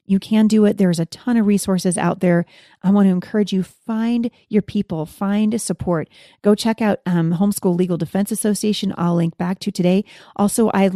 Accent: American